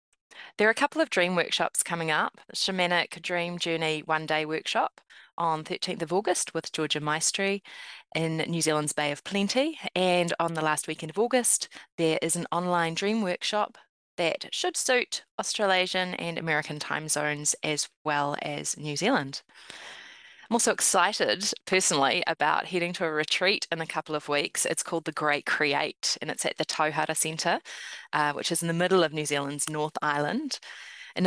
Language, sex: English, female